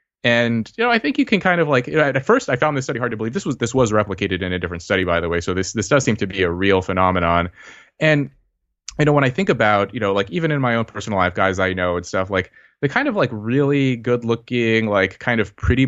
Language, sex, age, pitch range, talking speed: English, male, 20-39, 95-125 Hz, 280 wpm